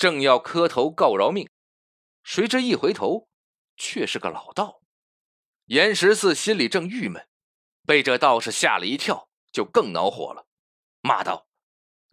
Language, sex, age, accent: Chinese, male, 30-49, native